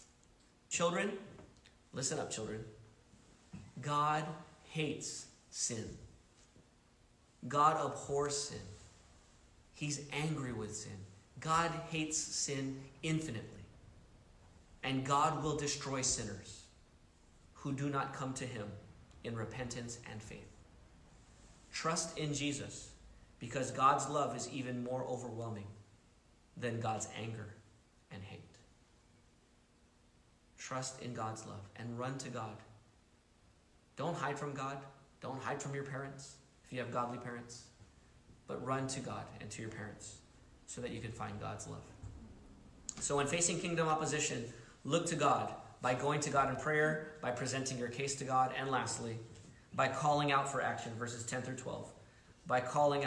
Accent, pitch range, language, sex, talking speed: American, 110-140 Hz, English, male, 130 wpm